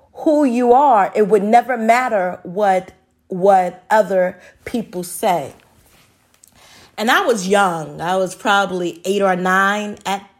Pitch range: 190-265 Hz